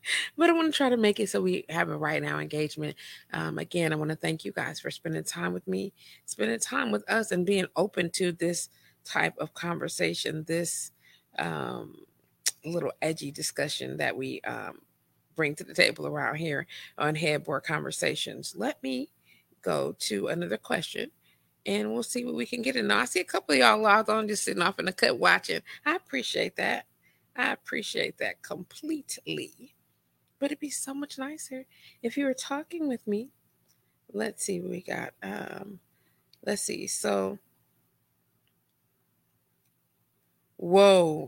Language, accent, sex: English, American, female